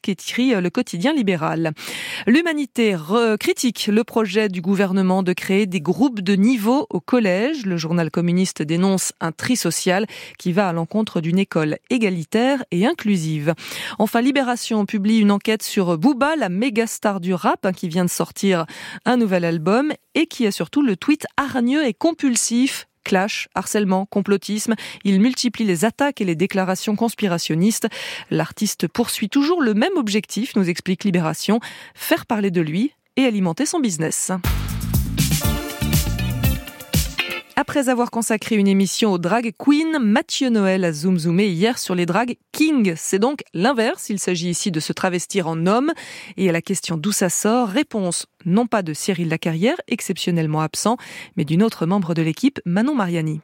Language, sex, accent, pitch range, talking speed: French, female, French, 180-240 Hz, 160 wpm